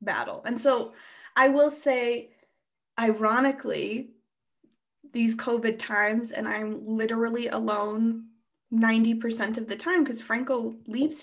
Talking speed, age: 110 wpm, 20-39